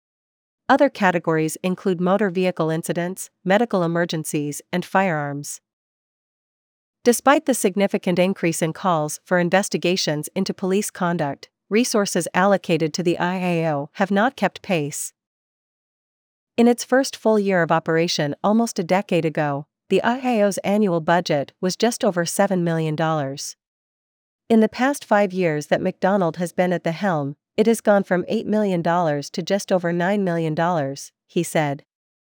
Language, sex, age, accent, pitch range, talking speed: English, female, 40-59, American, 165-200 Hz, 140 wpm